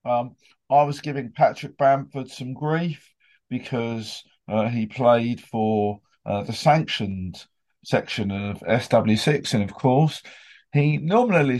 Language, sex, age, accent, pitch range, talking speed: English, male, 40-59, British, 120-150 Hz, 125 wpm